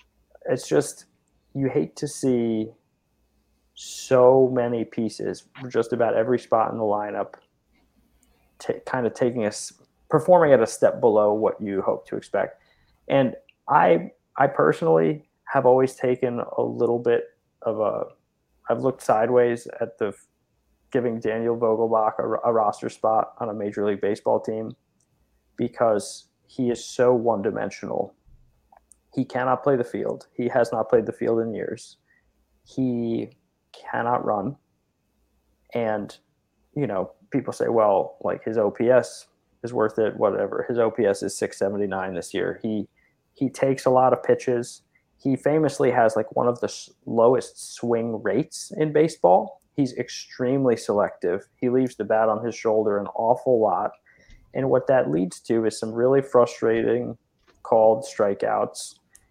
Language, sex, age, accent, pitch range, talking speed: English, male, 20-39, American, 110-130 Hz, 150 wpm